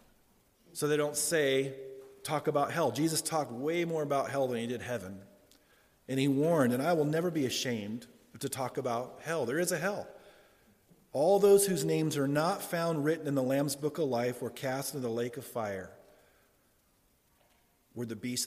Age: 40-59